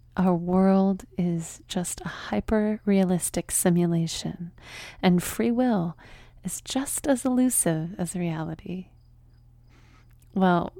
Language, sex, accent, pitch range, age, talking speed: English, female, American, 160-195 Hz, 30-49, 95 wpm